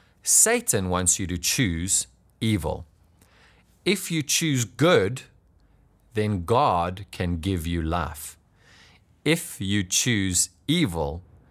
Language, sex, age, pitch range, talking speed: English, male, 30-49, 85-110 Hz, 105 wpm